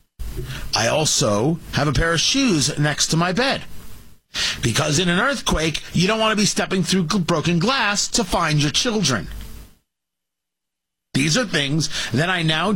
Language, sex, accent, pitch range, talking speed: English, male, American, 130-205 Hz, 160 wpm